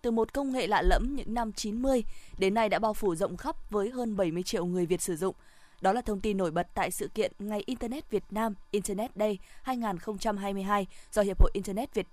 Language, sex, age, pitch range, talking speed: Vietnamese, female, 20-39, 190-230 Hz, 225 wpm